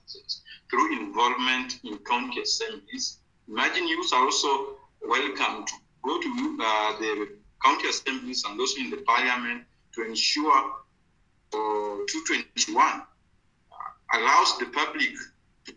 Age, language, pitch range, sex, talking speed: 50-69, English, 270-435 Hz, male, 115 wpm